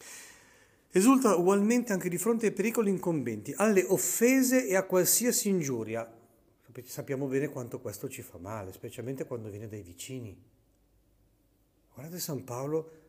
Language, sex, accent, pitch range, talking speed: Italian, male, native, 105-170 Hz, 135 wpm